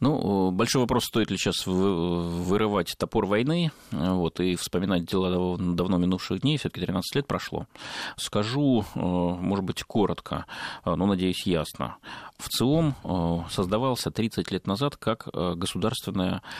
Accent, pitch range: native, 90-115 Hz